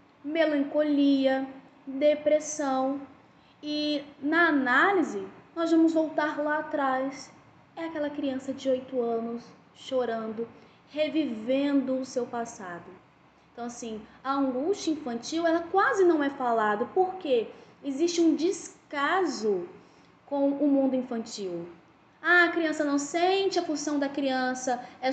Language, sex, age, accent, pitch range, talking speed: Portuguese, female, 10-29, Brazilian, 245-315 Hz, 115 wpm